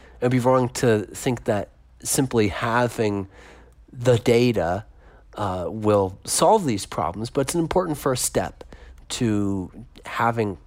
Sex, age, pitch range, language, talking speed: male, 40-59, 95-125 Hz, English, 135 wpm